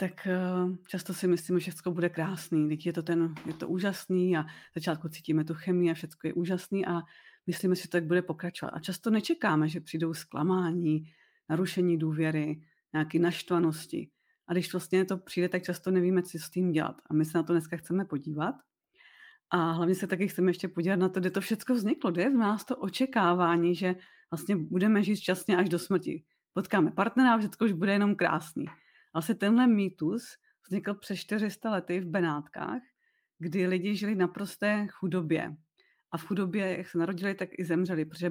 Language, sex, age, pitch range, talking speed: Czech, female, 30-49, 170-195 Hz, 185 wpm